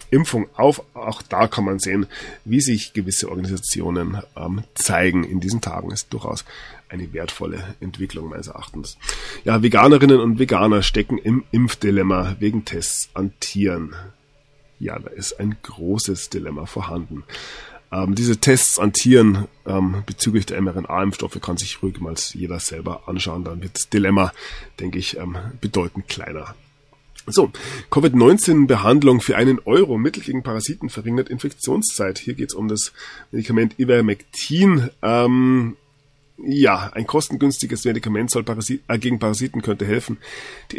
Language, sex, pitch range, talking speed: German, male, 95-130 Hz, 140 wpm